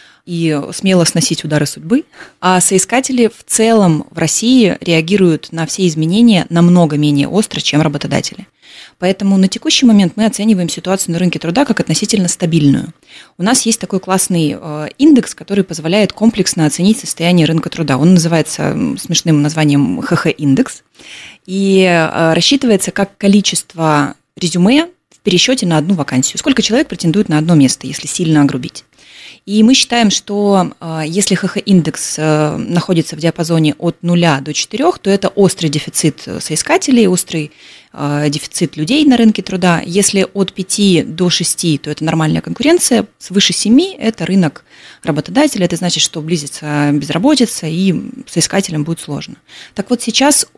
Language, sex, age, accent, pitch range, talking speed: Russian, female, 20-39, native, 160-210 Hz, 150 wpm